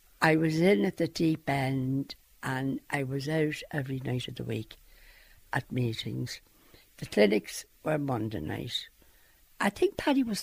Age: 60-79